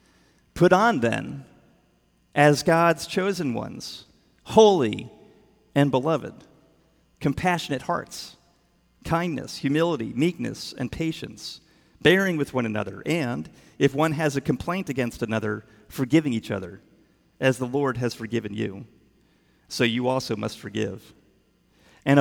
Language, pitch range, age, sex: English, 115-160 Hz, 40-59, male